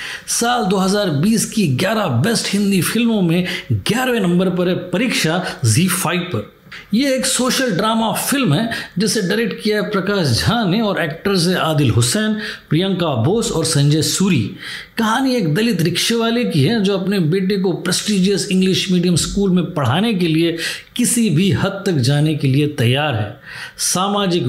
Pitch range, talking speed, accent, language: 160-210 Hz, 165 wpm, native, Hindi